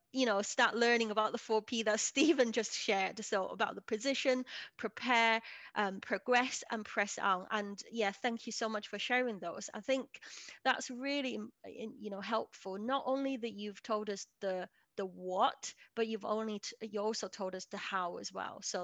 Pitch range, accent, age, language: 205-245 Hz, British, 30-49, English